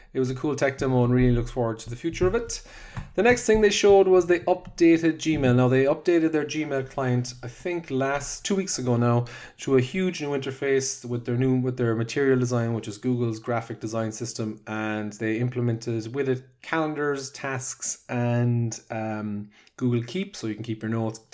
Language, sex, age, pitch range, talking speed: English, male, 30-49, 115-140 Hz, 200 wpm